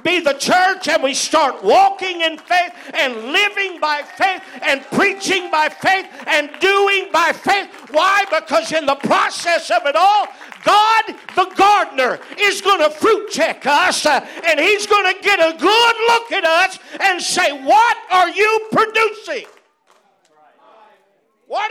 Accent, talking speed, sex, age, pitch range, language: American, 155 wpm, male, 50-69, 285-395 Hz, English